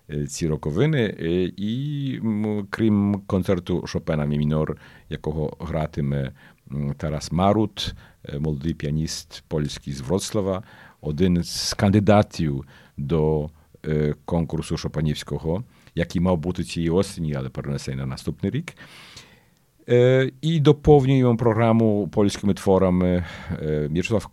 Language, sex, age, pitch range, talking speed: Ukrainian, male, 50-69, 75-100 Hz, 115 wpm